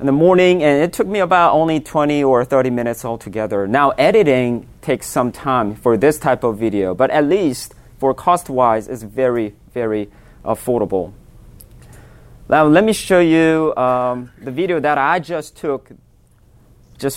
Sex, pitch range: male, 115-145 Hz